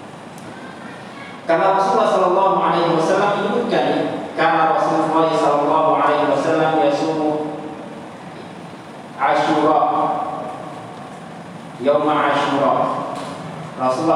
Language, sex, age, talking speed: Indonesian, male, 40-59, 45 wpm